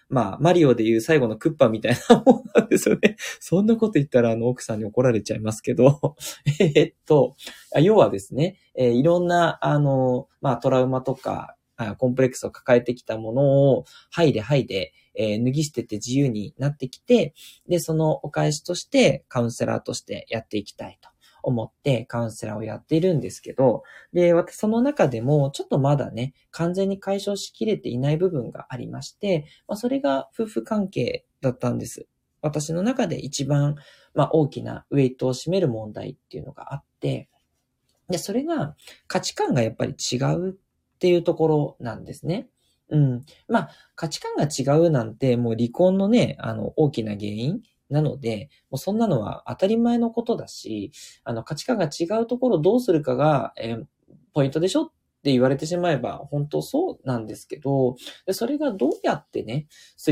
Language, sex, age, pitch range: Japanese, male, 20-39, 125-175 Hz